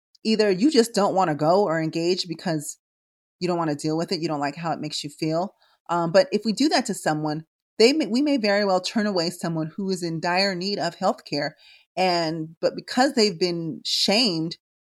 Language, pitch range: English, 170-215 Hz